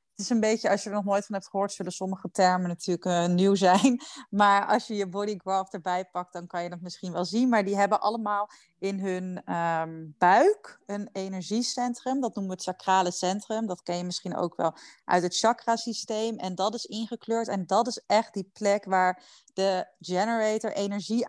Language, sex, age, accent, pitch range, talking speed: Dutch, female, 30-49, Dutch, 190-225 Hz, 205 wpm